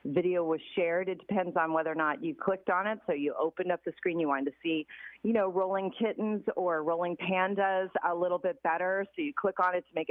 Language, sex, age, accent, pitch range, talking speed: English, female, 40-59, American, 160-190 Hz, 245 wpm